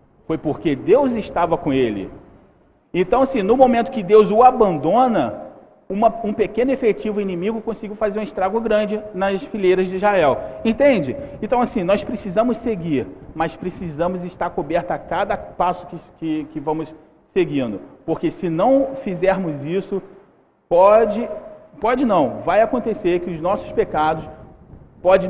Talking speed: 145 wpm